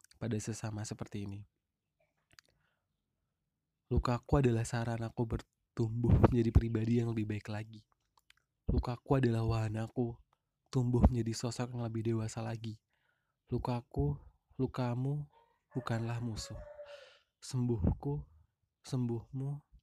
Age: 20-39